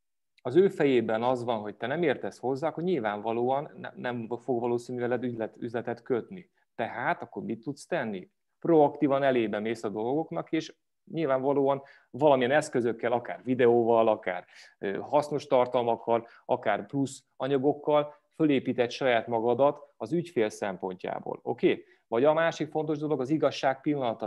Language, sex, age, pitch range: Hungarian, male, 30-49, 120-150 Hz